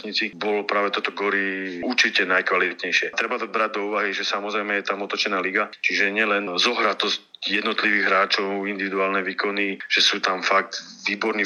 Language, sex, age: Slovak, male, 40-59